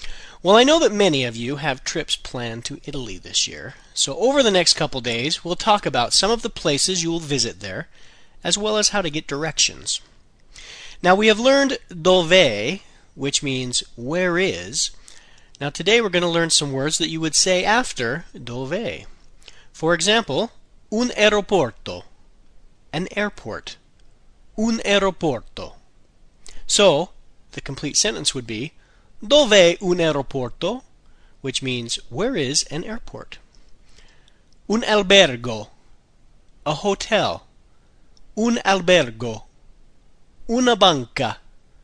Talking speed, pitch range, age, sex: 130 wpm, 140-215 Hz, 40-59, male